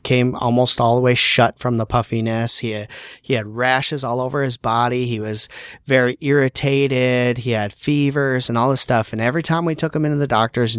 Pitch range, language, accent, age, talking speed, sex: 115-135 Hz, English, American, 30-49, 205 wpm, male